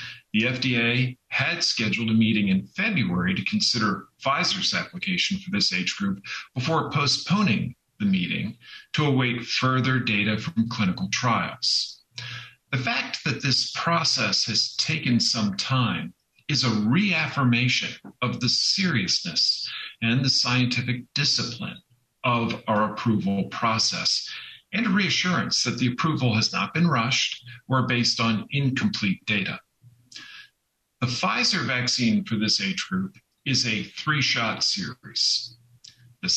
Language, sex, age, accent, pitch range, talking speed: English, male, 50-69, American, 115-155 Hz, 125 wpm